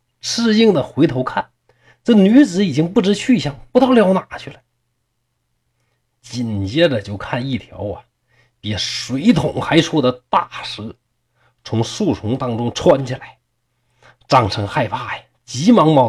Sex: male